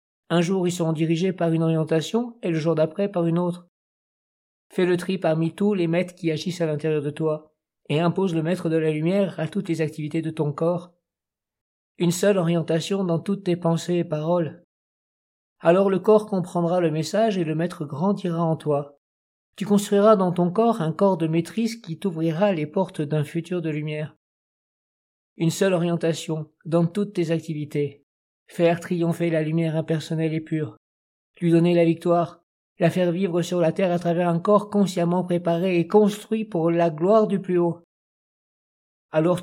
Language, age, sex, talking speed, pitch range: French, 50-69, male, 180 wpm, 160-180 Hz